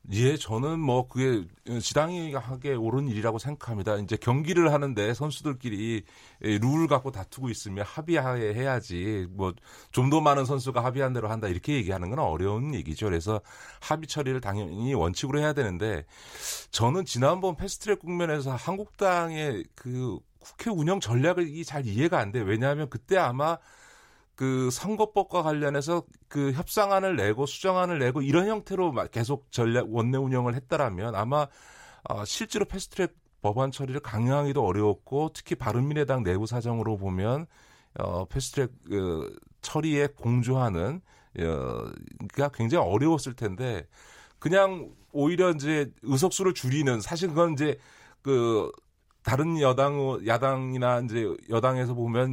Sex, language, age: male, Korean, 40-59